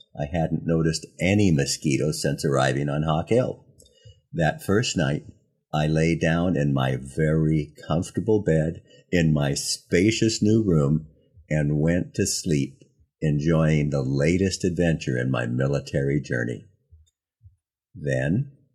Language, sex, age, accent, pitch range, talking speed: English, male, 50-69, American, 75-110 Hz, 125 wpm